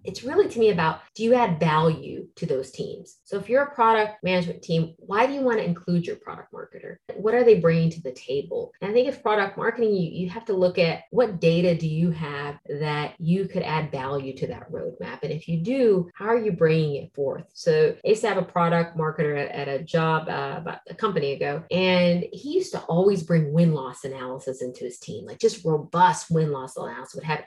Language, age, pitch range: English, 30-49, 150-190 Hz